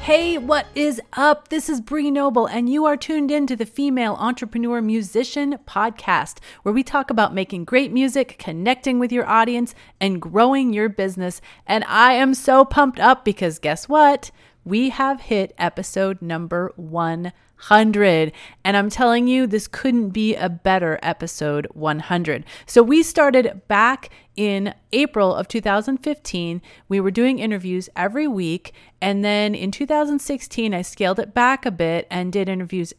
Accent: American